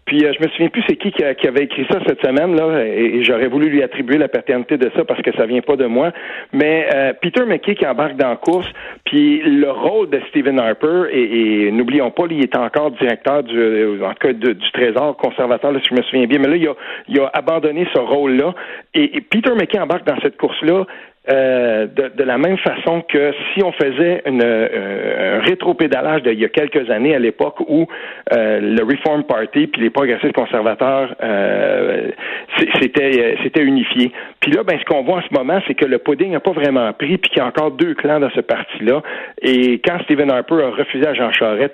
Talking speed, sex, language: 230 wpm, male, French